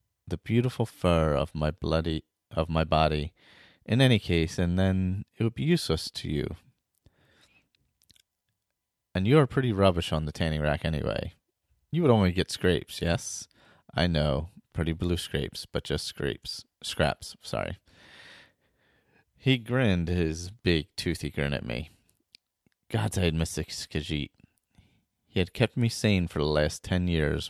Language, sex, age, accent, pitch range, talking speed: English, male, 30-49, American, 75-100 Hz, 150 wpm